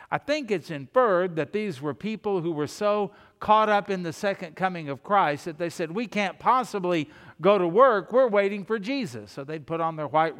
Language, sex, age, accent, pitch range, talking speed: English, male, 60-79, American, 155-195 Hz, 220 wpm